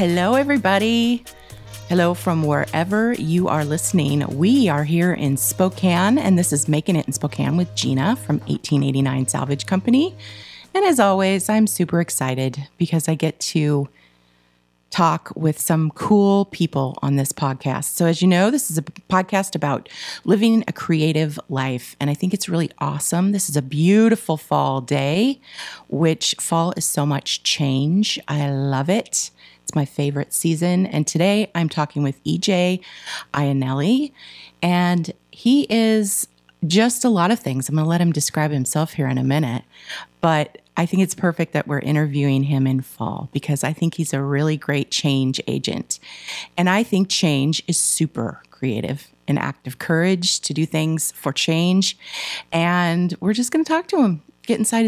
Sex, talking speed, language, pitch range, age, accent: female, 165 wpm, English, 140-190 Hz, 30-49, American